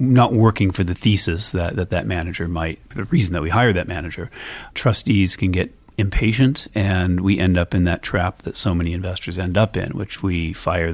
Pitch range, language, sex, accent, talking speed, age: 85-105 Hz, English, male, American, 210 wpm, 40-59